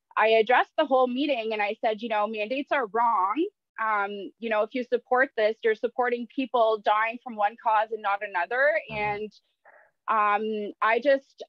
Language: English